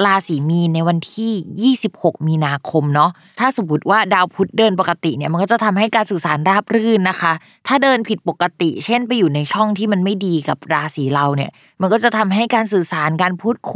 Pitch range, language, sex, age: 165-210 Hz, Thai, female, 20-39